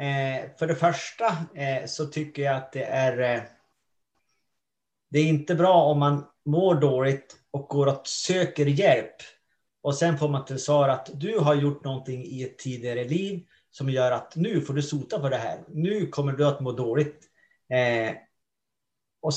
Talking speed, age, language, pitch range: 180 wpm, 30-49, Swedish, 130-160 Hz